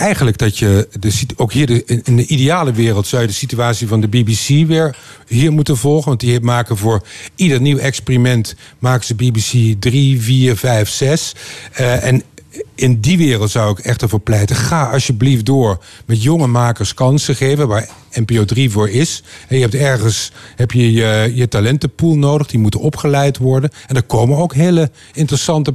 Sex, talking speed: male, 170 wpm